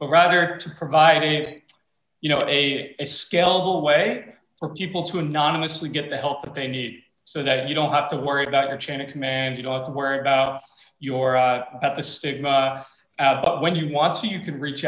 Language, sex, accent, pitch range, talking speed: English, male, American, 130-155 Hz, 215 wpm